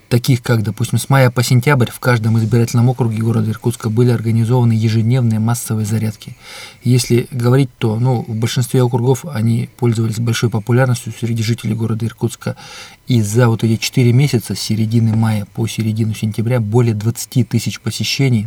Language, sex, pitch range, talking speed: Russian, male, 115-125 Hz, 160 wpm